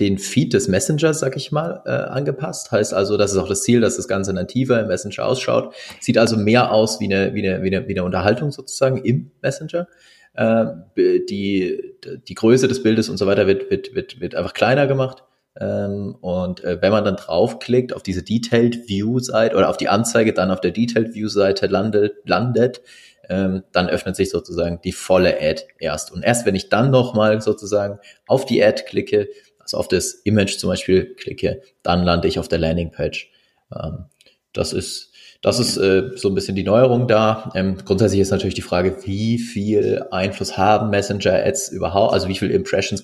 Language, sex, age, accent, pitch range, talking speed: German, male, 30-49, German, 95-120 Hz, 200 wpm